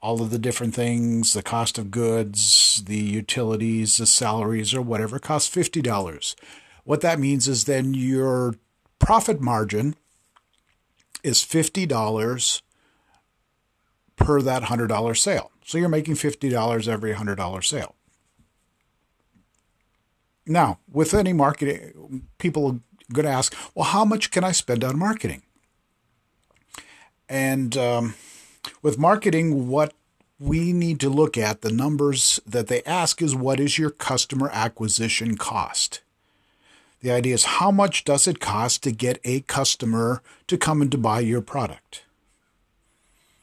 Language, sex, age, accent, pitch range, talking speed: English, male, 50-69, American, 115-150 Hz, 135 wpm